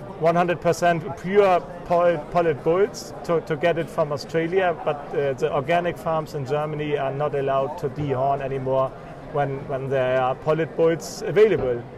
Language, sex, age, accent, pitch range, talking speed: English, male, 40-59, German, 150-175 Hz, 160 wpm